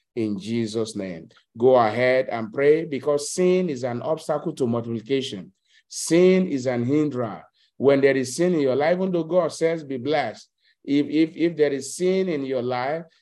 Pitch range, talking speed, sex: 115-150 Hz, 180 wpm, male